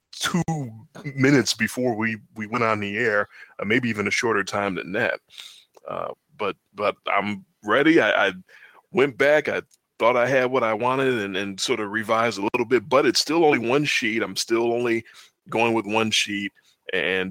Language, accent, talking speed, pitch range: English, American, 190 wpm, 105-120 Hz